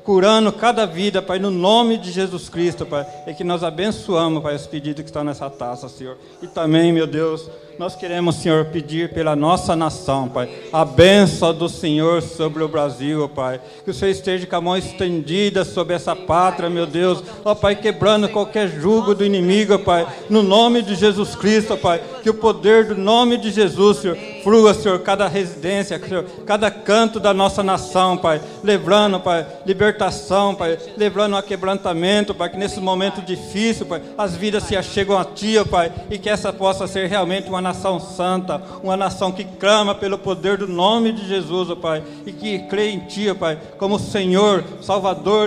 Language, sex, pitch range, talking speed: Portuguese, male, 165-200 Hz, 190 wpm